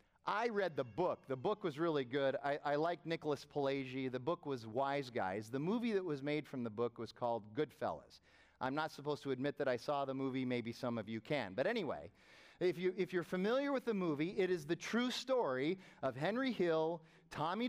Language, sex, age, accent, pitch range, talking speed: English, male, 40-59, American, 140-195 Hz, 215 wpm